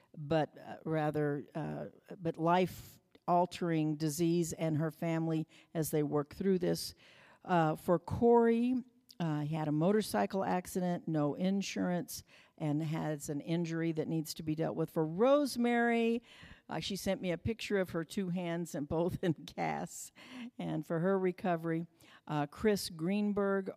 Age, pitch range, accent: 60-79, 160-195 Hz, American